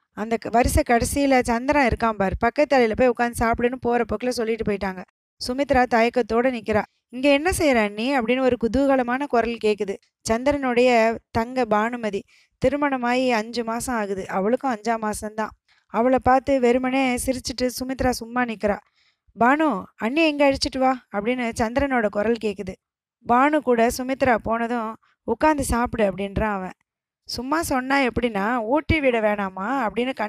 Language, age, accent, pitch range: Tamil, 20-39, native, 220-265 Hz